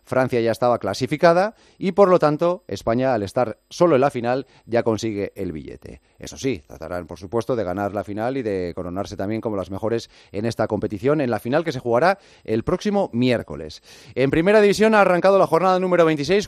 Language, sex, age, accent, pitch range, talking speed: Spanish, male, 30-49, Spanish, 110-165 Hz, 205 wpm